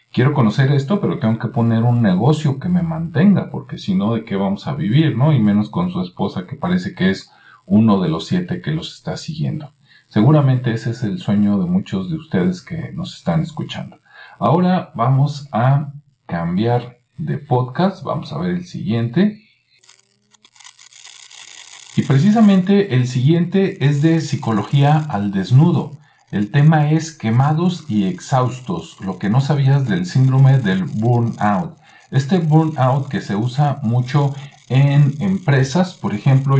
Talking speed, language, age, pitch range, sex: 155 wpm, Spanish, 50-69, 120-165 Hz, male